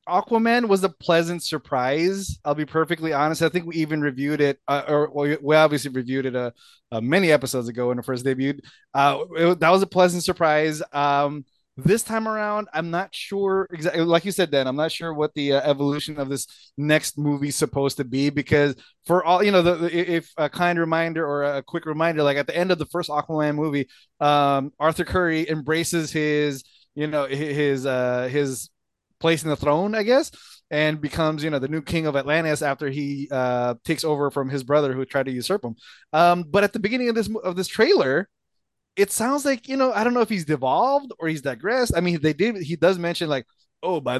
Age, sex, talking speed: 20-39, male, 220 wpm